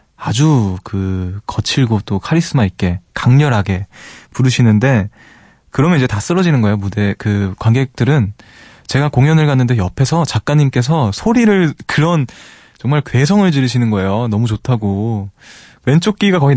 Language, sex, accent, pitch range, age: Korean, male, native, 105-140 Hz, 20-39